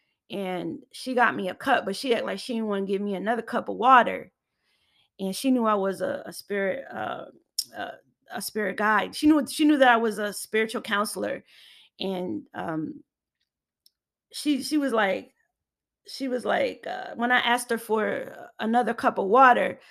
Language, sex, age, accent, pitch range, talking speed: English, female, 20-39, American, 210-250 Hz, 185 wpm